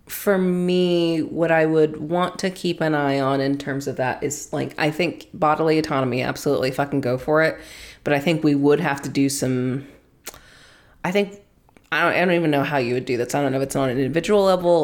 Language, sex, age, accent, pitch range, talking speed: English, female, 20-39, American, 140-175 Hz, 225 wpm